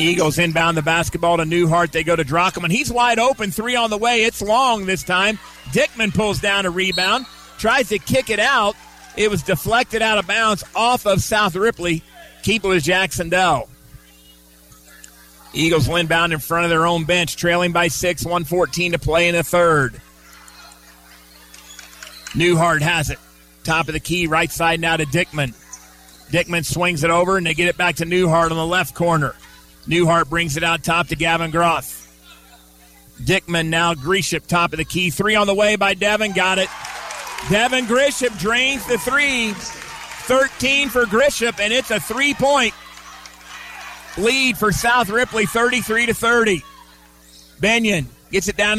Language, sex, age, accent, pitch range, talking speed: English, male, 30-49, American, 165-220 Hz, 165 wpm